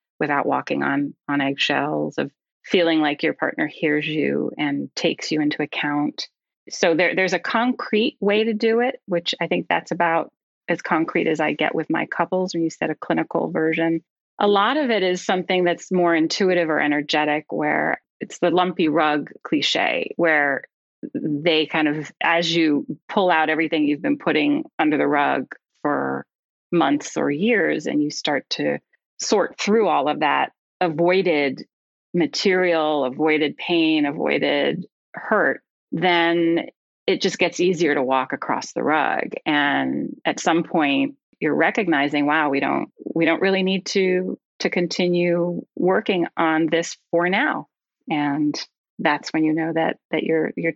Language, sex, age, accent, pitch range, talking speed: English, female, 30-49, American, 150-185 Hz, 160 wpm